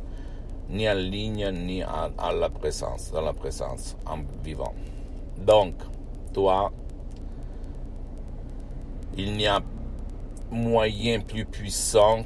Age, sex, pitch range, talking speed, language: 60-79, male, 75-95 Hz, 100 wpm, Italian